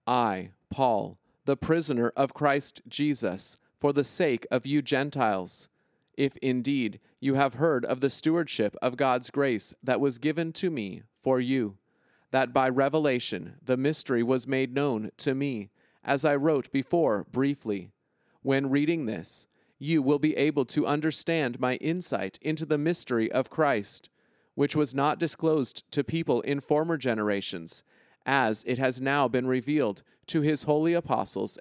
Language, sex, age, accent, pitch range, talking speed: English, male, 30-49, American, 125-150 Hz, 155 wpm